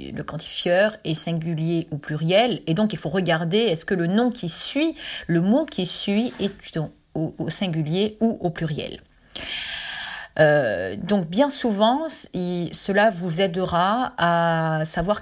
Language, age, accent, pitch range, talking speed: French, 40-59, French, 160-215 Hz, 145 wpm